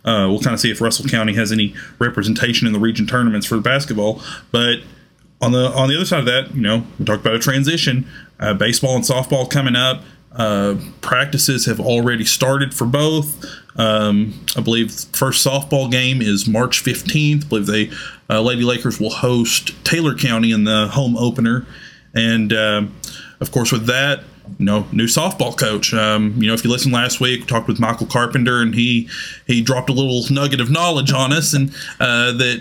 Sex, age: male, 30-49